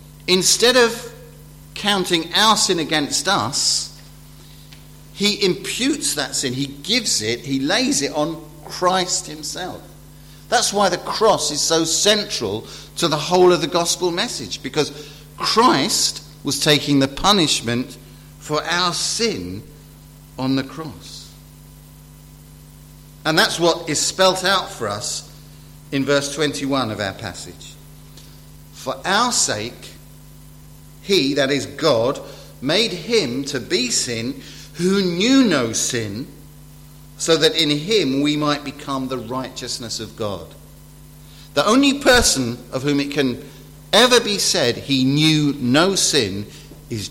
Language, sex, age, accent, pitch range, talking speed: English, male, 50-69, British, 115-160 Hz, 130 wpm